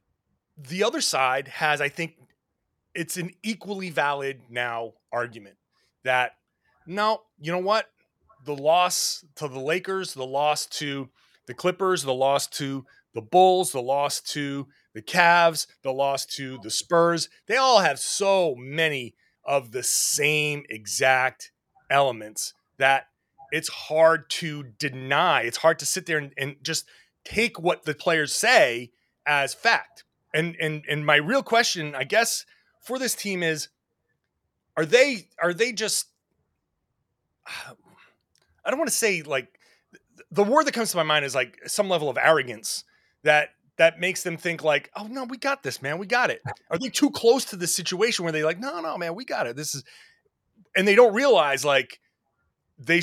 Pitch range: 135-185 Hz